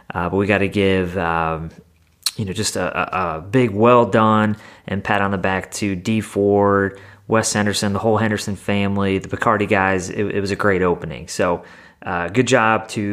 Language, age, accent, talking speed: English, 30-49, American, 200 wpm